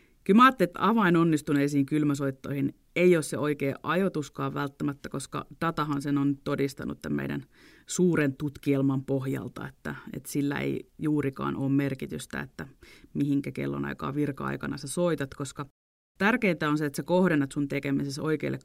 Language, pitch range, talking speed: Finnish, 140-175 Hz, 140 wpm